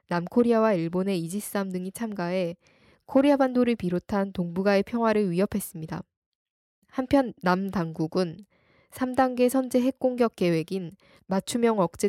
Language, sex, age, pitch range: Korean, female, 10-29, 180-235 Hz